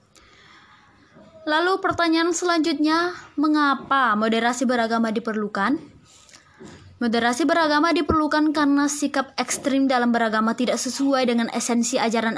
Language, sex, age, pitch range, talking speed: Indonesian, female, 20-39, 230-295 Hz, 95 wpm